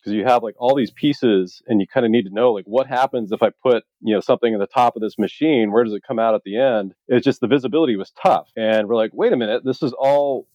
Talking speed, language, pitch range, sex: 295 wpm, English, 100-125 Hz, male